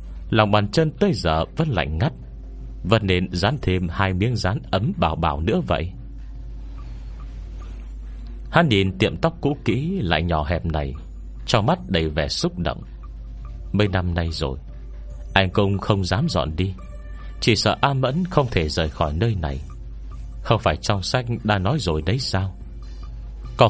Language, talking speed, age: Vietnamese, 165 wpm, 30-49